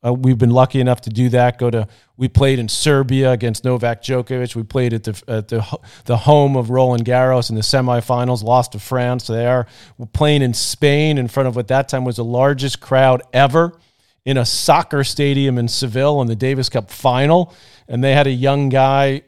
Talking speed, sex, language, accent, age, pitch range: 210 wpm, male, English, American, 40-59, 125-140 Hz